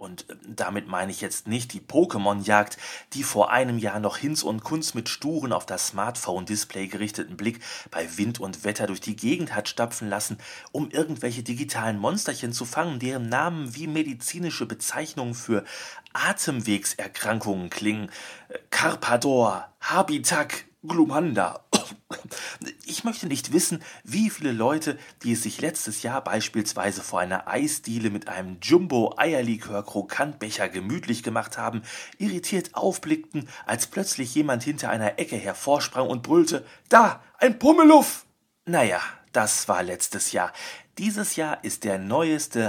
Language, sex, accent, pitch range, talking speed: German, male, German, 105-155 Hz, 135 wpm